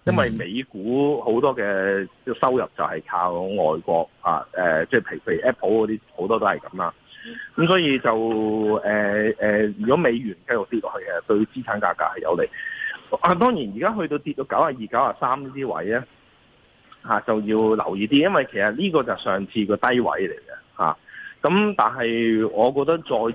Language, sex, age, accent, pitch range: Chinese, male, 30-49, native, 100-140 Hz